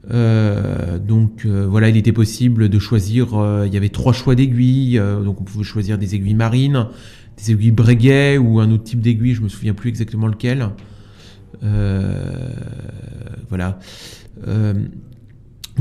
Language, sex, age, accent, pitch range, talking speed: French, male, 30-49, French, 105-125 Hz, 155 wpm